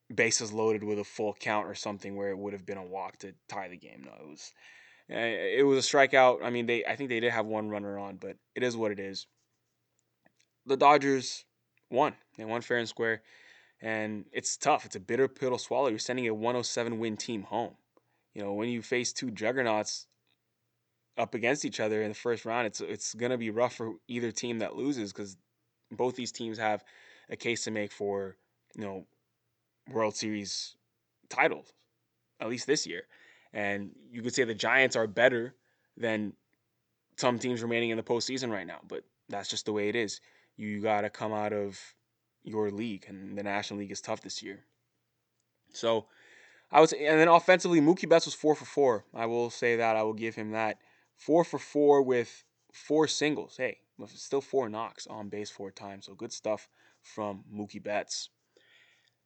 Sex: male